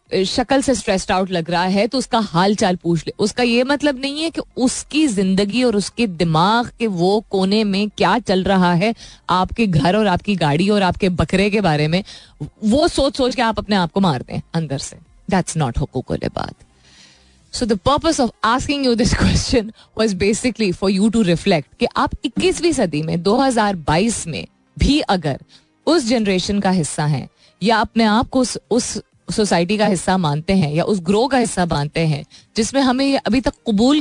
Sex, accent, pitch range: female, native, 175-255 Hz